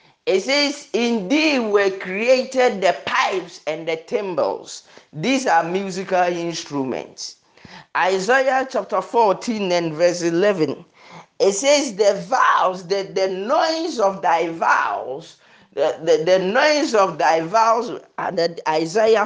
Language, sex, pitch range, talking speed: English, male, 185-265 Hz, 120 wpm